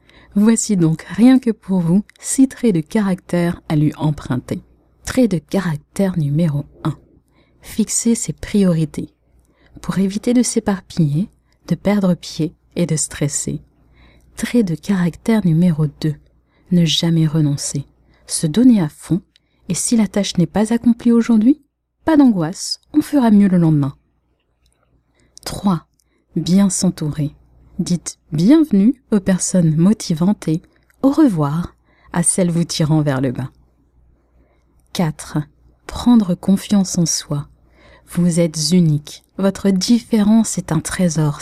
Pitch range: 155-205 Hz